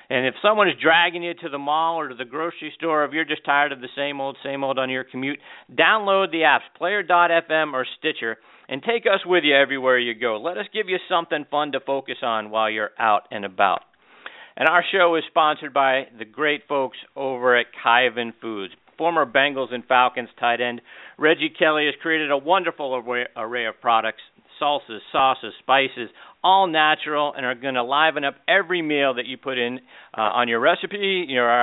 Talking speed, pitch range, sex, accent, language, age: 200 wpm, 130-170 Hz, male, American, English, 50-69